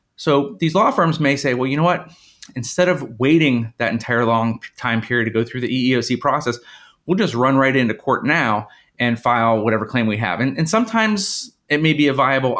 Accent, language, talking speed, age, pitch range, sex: American, English, 215 wpm, 30-49, 120-145 Hz, male